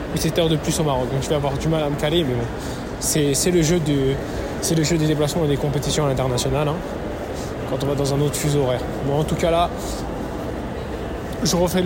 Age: 20-39